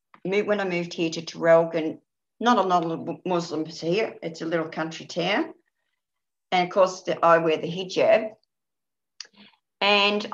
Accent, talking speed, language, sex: Australian, 155 wpm, English, female